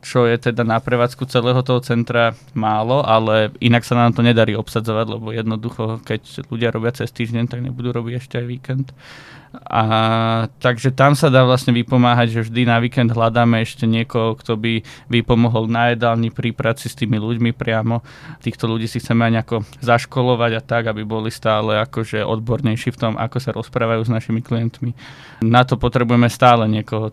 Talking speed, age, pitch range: 175 wpm, 20-39, 115-125 Hz